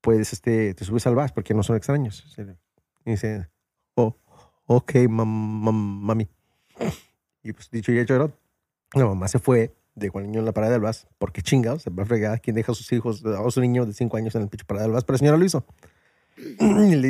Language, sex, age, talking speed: English, male, 30-49, 220 wpm